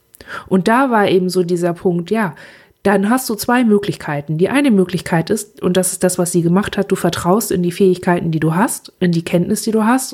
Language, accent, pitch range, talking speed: German, German, 175-210 Hz, 230 wpm